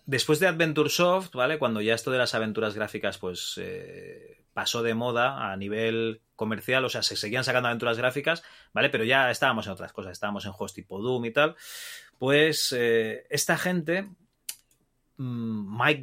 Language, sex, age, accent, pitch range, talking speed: Spanish, male, 30-49, Spanish, 115-155 Hz, 170 wpm